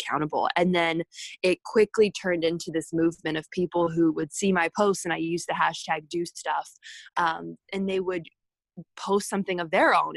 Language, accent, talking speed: English, American, 190 wpm